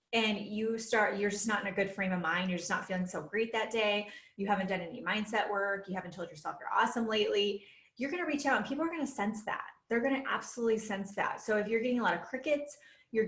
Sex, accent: female, American